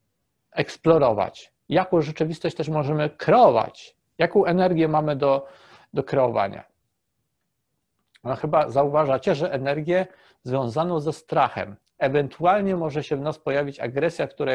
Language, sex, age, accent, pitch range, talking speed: Polish, male, 40-59, native, 130-170 Hz, 115 wpm